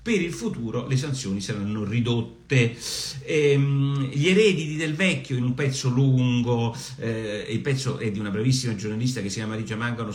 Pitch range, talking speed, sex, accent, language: 105-130 Hz, 170 wpm, male, native, Italian